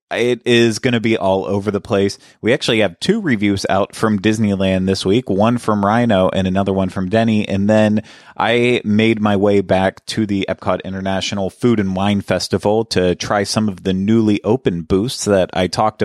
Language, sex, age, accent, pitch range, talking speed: English, male, 30-49, American, 95-115 Hz, 200 wpm